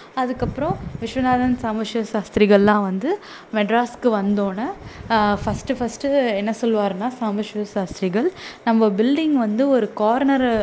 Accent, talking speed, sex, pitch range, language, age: native, 100 wpm, female, 200-240 Hz, Tamil, 20-39